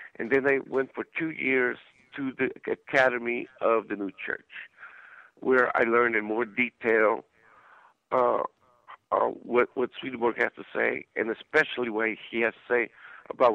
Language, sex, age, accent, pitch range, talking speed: English, male, 60-79, American, 120-145 Hz, 160 wpm